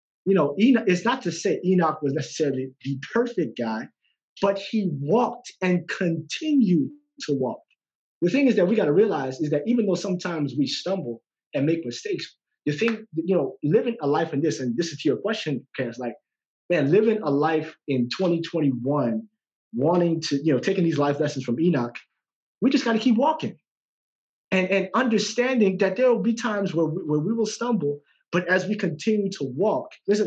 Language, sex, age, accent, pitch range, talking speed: English, male, 30-49, American, 140-205 Hz, 190 wpm